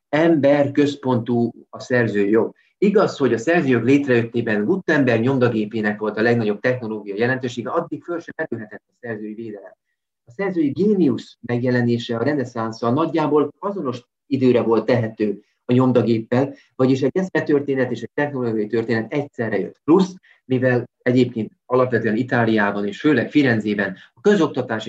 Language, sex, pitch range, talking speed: Hungarian, male, 110-135 Hz, 130 wpm